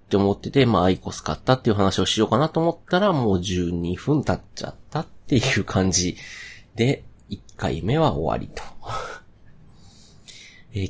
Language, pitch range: Japanese, 90-120 Hz